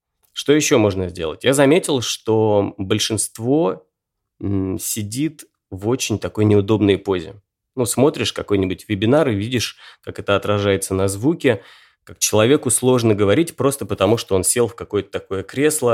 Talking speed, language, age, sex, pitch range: 145 wpm, Russian, 20-39, male, 100-130 Hz